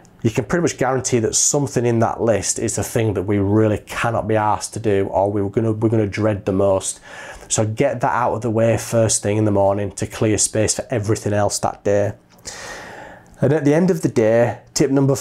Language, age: English, 30-49